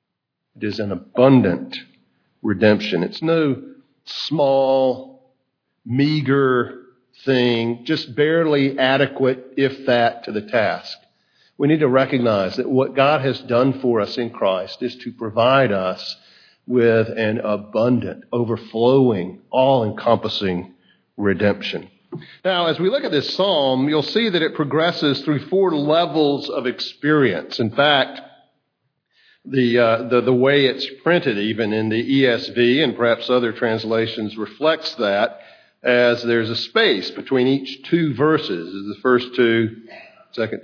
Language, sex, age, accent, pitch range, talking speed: English, male, 50-69, American, 115-145 Hz, 130 wpm